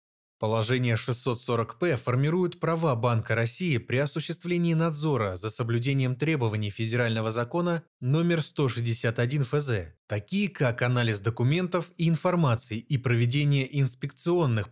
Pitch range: 115-160 Hz